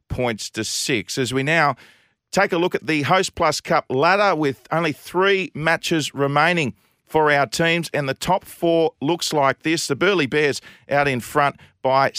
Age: 40-59